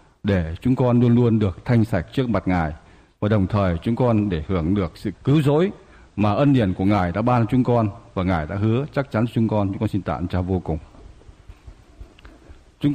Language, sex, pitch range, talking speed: Vietnamese, male, 105-140 Hz, 215 wpm